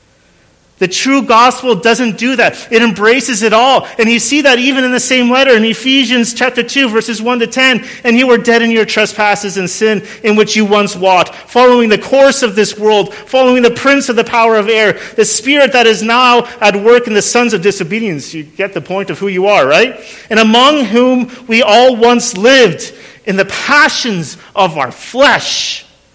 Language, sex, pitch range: English, male, 195-245 Hz